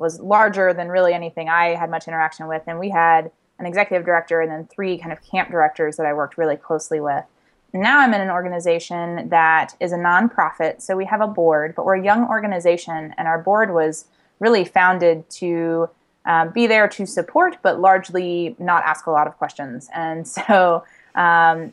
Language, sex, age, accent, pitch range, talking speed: English, female, 20-39, American, 165-195 Hz, 195 wpm